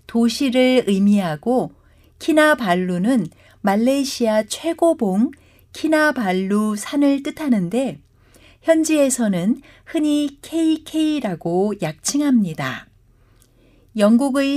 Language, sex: Korean, female